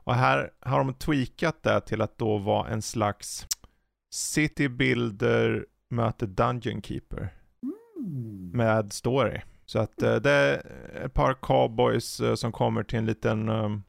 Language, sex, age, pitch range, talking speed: Swedish, male, 30-49, 110-135 Hz, 135 wpm